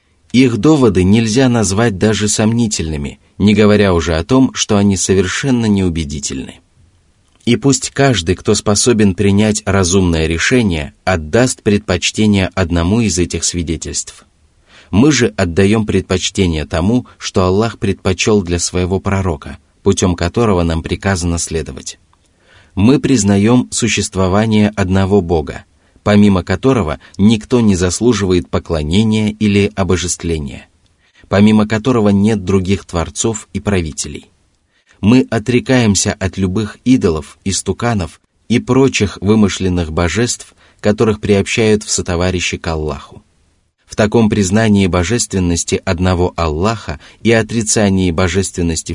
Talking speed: 110 wpm